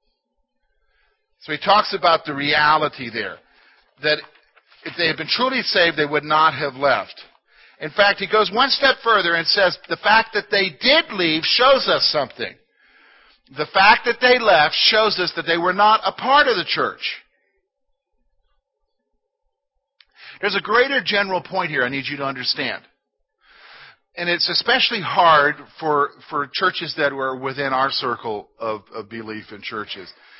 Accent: American